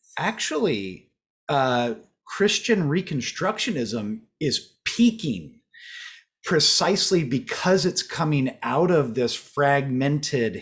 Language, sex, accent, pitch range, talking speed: English, male, American, 125-190 Hz, 80 wpm